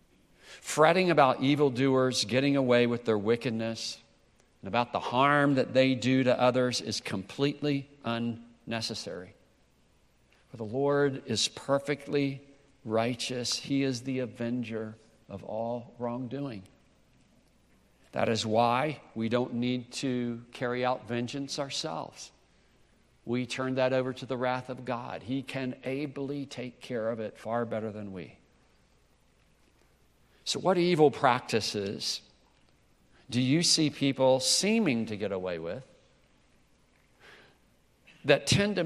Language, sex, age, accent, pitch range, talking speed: English, male, 60-79, American, 115-140 Hz, 125 wpm